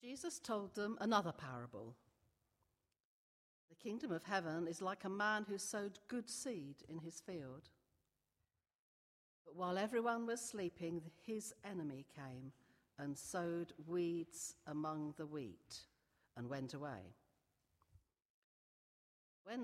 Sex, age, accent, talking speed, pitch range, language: female, 60-79, British, 115 wpm, 140-215 Hz, English